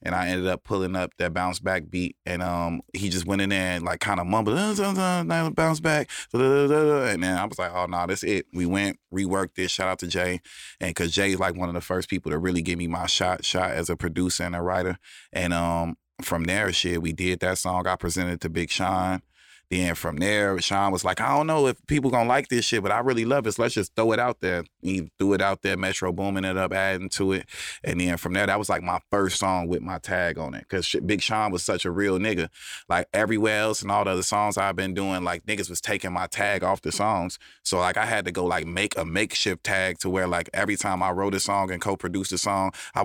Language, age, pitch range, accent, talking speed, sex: English, 20-39, 90-100 Hz, American, 260 wpm, male